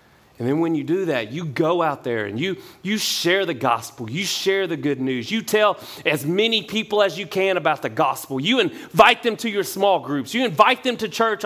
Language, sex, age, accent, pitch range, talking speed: English, male, 30-49, American, 140-220 Hz, 230 wpm